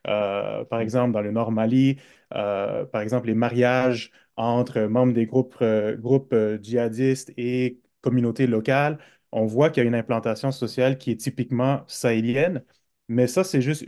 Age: 30-49